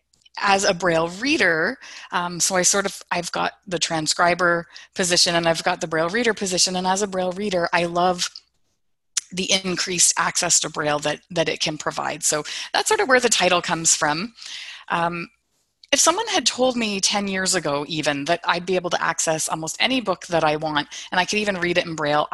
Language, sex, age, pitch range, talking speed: English, female, 20-39, 165-200 Hz, 205 wpm